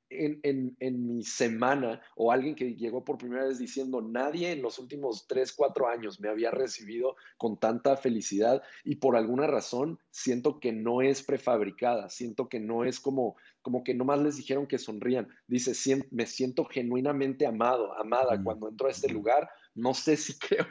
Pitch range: 120-140 Hz